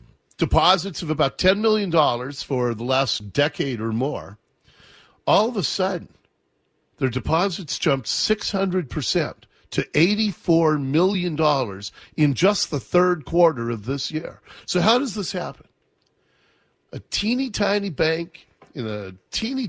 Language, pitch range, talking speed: English, 145-205 Hz, 130 wpm